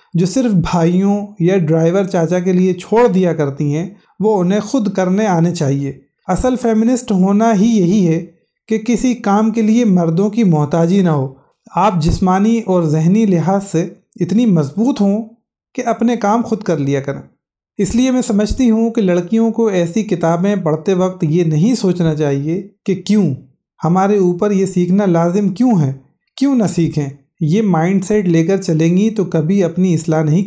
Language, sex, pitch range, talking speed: Urdu, male, 165-205 Hz, 175 wpm